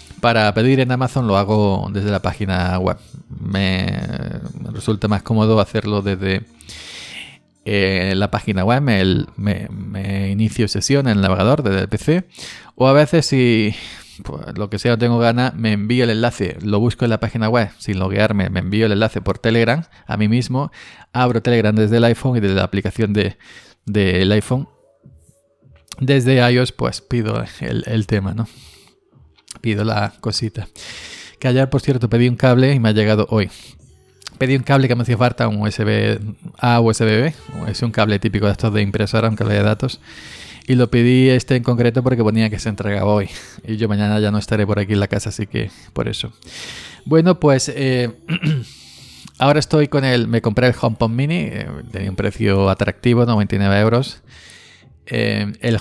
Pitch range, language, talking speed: 100-125 Hz, Spanish, 185 wpm